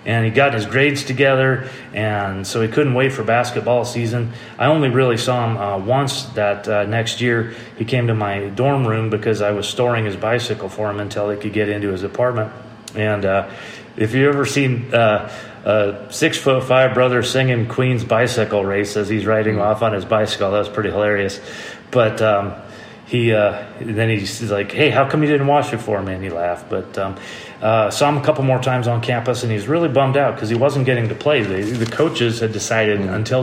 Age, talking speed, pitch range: 30-49, 215 wpm, 105-130 Hz